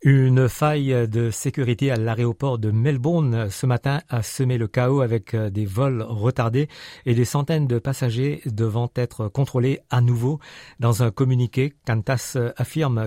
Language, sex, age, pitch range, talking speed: French, male, 50-69, 115-140 Hz, 150 wpm